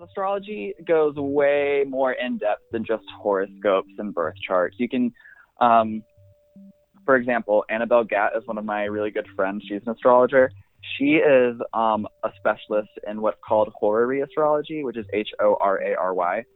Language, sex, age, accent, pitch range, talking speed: English, male, 20-39, American, 105-125 Hz, 150 wpm